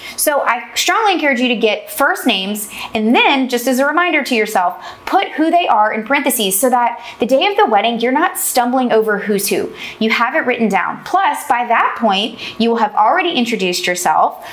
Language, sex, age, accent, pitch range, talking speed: English, female, 20-39, American, 210-280 Hz, 210 wpm